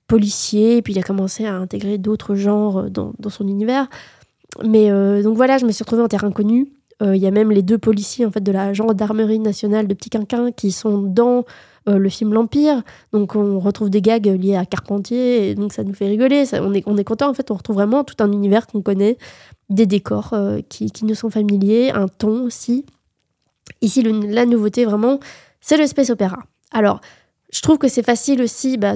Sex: female